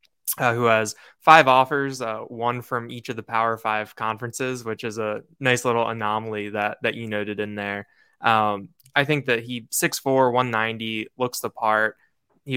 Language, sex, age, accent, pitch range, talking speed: English, male, 10-29, American, 105-115 Hz, 175 wpm